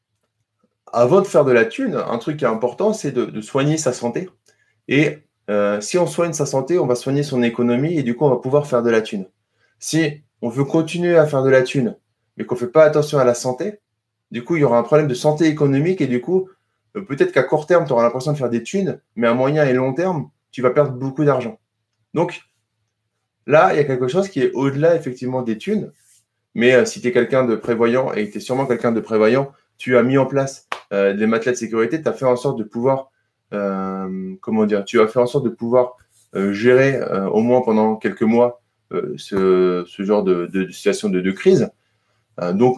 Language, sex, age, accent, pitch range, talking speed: French, male, 20-39, French, 110-140 Hz, 235 wpm